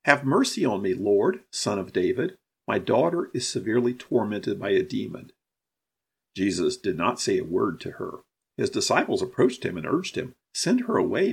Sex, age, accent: male, 50-69, American